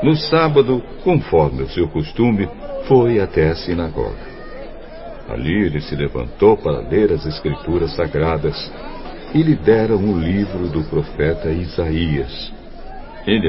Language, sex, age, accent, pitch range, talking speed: Portuguese, male, 60-79, Brazilian, 85-120 Hz, 125 wpm